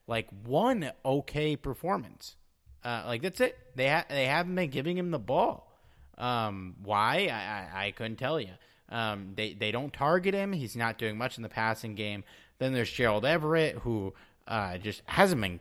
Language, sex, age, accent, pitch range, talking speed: English, male, 30-49, American, 105-150 Hz, 185 wpm